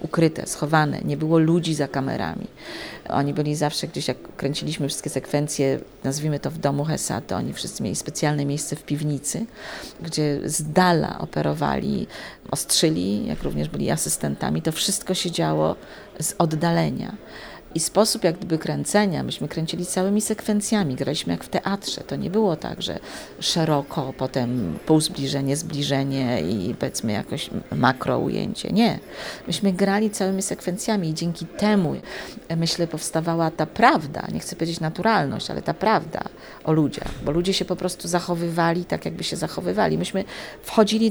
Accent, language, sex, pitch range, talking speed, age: native, Polish, female, 150-195 Hz, 150 wpm, 40-59